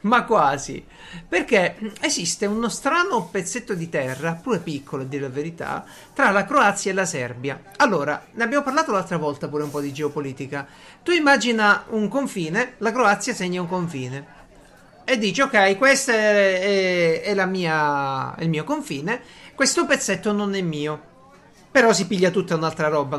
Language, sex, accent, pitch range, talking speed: Italian, male, native, 160-225 Hz, 165 wpm